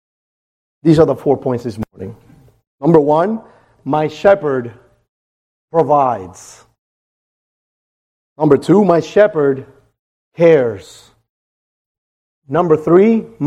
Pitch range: 135-180 Hz